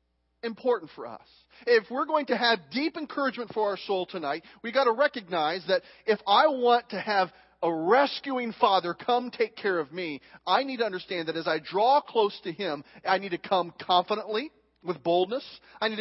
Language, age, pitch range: English, 40-59, 180-245 Hz